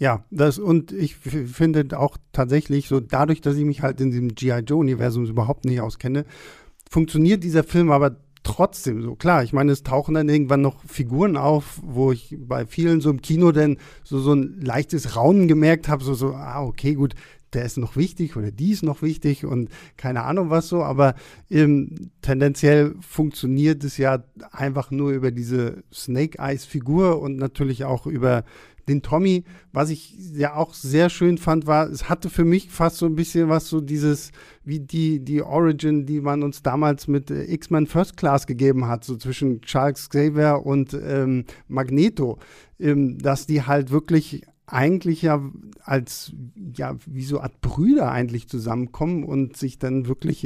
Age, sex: 50-69, male